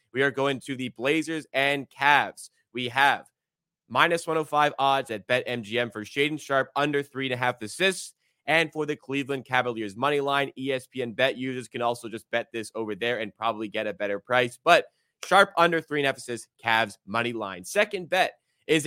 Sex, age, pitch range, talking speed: male, 20-39, 120-145 Hz, 195 wpm